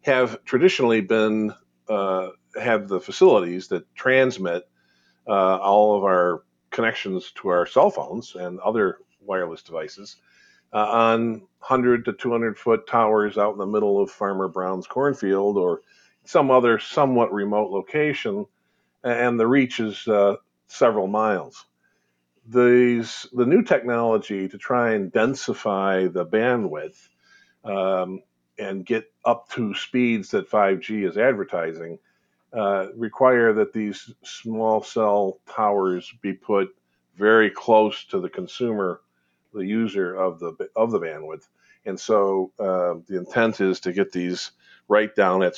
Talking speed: 135 wpm